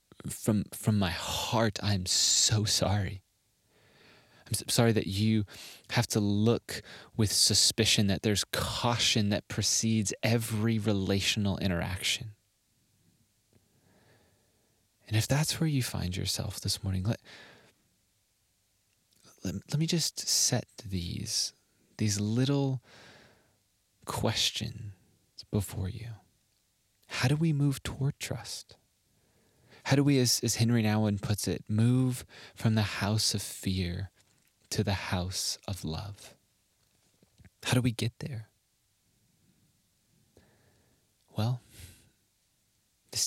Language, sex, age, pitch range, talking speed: English, male, 20-39, 100-115 Hz, 110 wpm